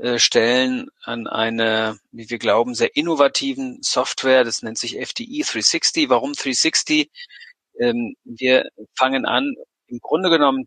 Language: German